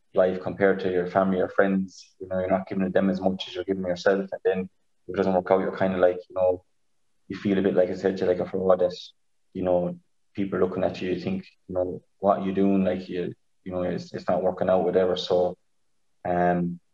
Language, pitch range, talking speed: English, 90-95 Hz, 250 wpm